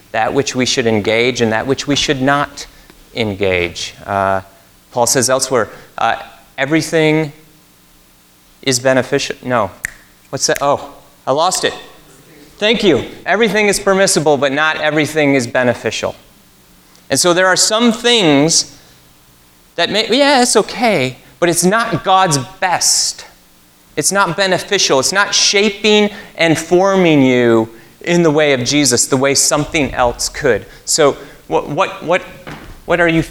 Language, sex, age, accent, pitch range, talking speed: English, male, 30-49, American, 110-160 Hz, 140 wpm